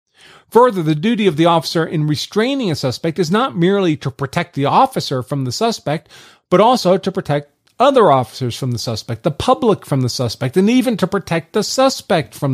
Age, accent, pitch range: 40-59, American, 140-190 Hz